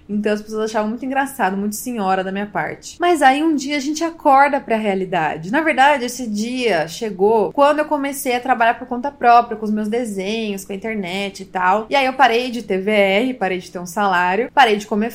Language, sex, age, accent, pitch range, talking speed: Portuguese, female, 20-39, Brazilian, 205-255 Hz, 220 wpm